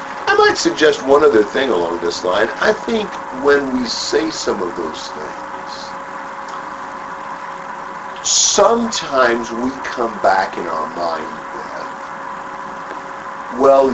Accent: American